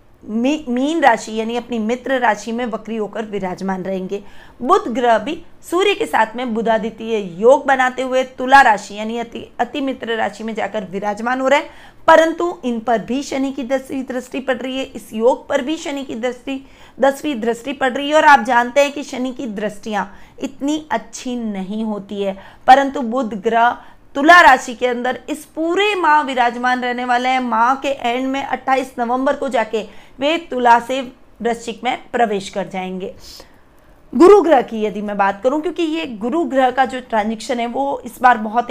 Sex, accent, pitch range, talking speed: female, native, 225-275 Hz, 185 wpm